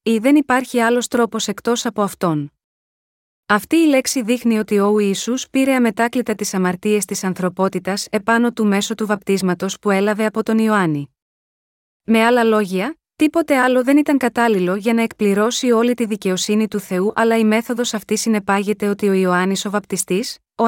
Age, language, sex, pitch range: 30-49, Greek, female, 205-245 Hz